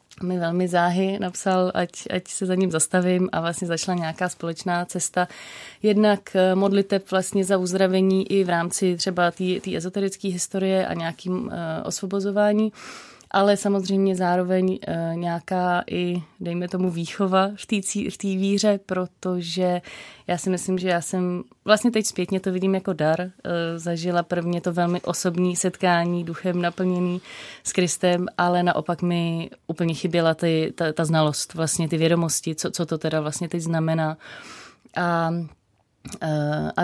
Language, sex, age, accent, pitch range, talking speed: Czech, female, 20-39, native, 170-195 Hz, 145 wpm